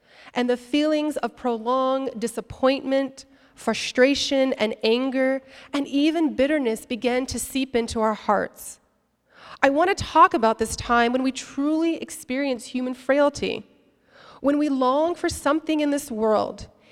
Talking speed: 140 wpm